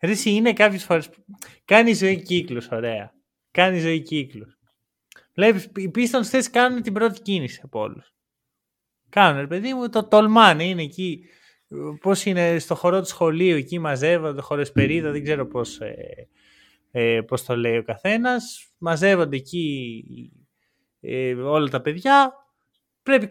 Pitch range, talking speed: 140-230 Hz, 150 wpm